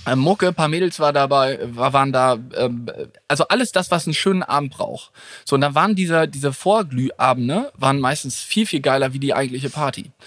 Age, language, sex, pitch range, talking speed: 20-39, German, male, 130-180 Hz, 185 wpm